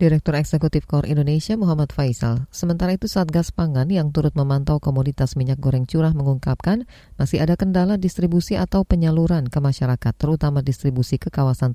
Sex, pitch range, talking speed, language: female, 130-165 Hz, 160 wpm, Indonesian